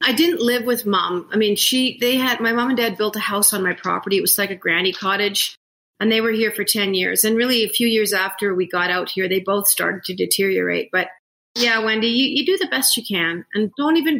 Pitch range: 190-230 Hz